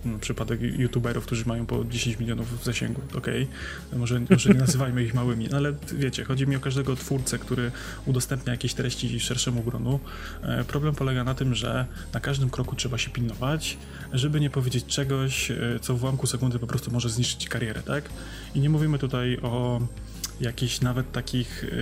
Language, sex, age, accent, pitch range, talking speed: Polish, male, 20-39, native, 120-135 Hz, 170 wpm